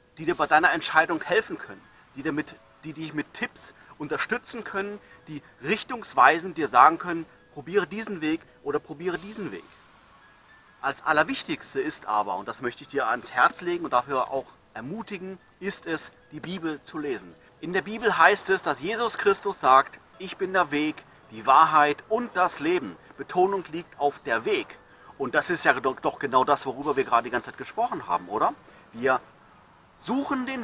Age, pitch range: 30-49, 150-220 Hz